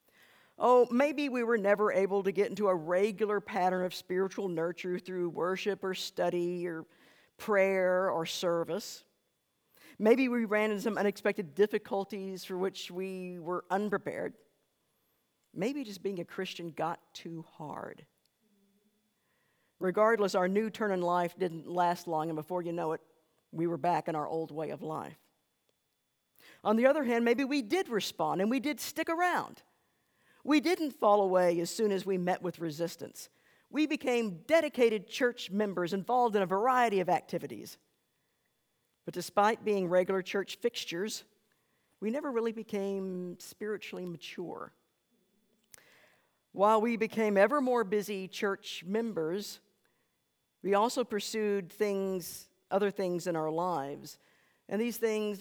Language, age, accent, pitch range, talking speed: English, 50-69, American, 180-215 Hz, 145 wpm